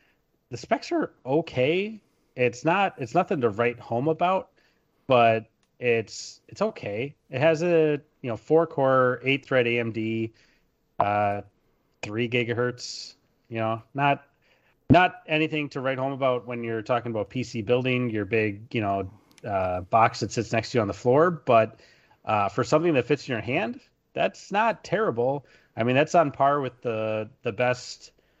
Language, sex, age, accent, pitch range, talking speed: English, male, 30-49, American, 110-135 Hz, 165 wpm